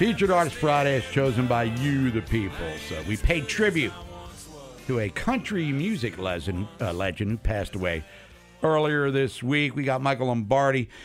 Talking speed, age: 160 wpm, 60-79